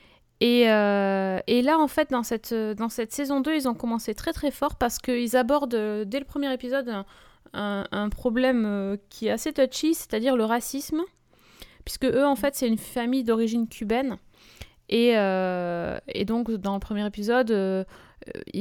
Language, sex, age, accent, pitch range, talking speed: French, female, 20-39, French, 205-240 Hz, 170 wpm